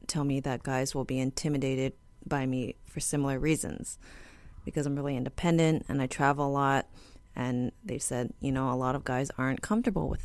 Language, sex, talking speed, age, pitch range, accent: English, female, 200 wpm, 30-49, 130-180 Hz, American